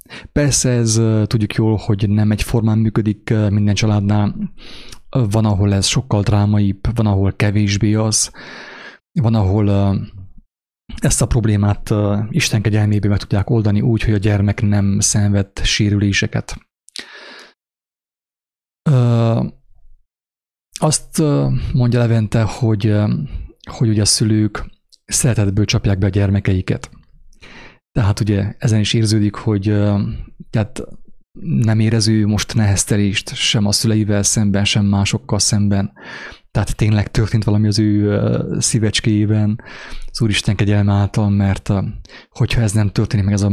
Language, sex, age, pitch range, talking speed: English, male, 30-49, 100-110 Hz, 115 wpm